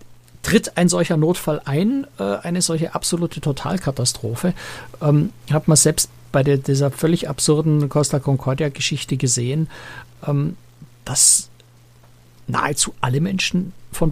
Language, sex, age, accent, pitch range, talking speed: German, male, 60-79, German, 130-165 Hz, 100 wpm